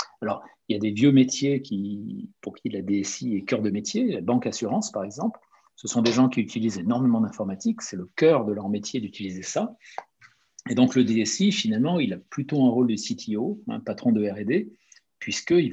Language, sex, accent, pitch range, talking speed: French, male, French, 110-170 Hz, 205 wpm